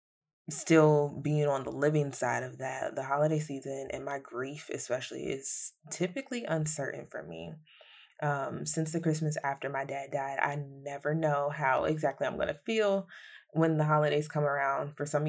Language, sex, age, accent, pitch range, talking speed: English, female, 20-39, American, 140-160 Hz, 175 wpm